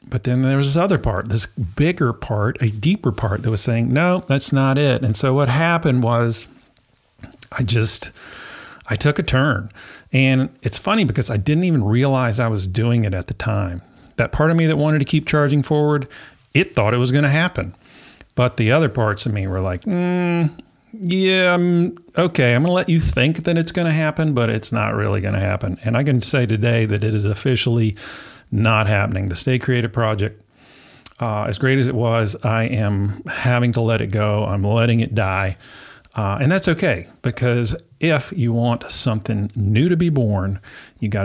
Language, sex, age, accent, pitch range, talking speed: English, male, 40-59, American, 105-145 Hz, 200 wpm